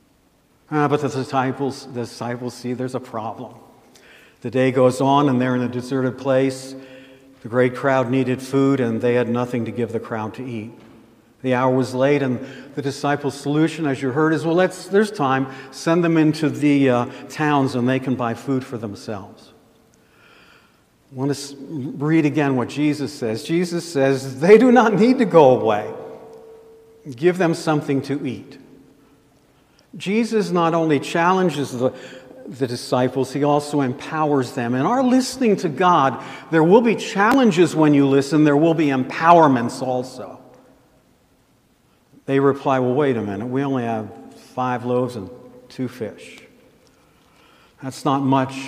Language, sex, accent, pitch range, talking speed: English, male, American, 125-150 Hz, 160 wpm